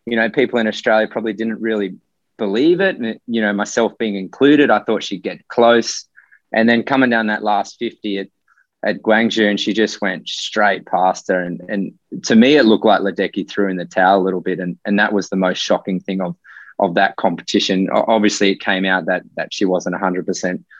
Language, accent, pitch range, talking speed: English, Australian, 95-115 Hz, 215 wpm